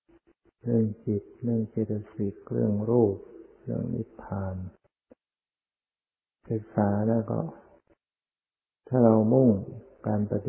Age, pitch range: 60-79, 100-115 Hz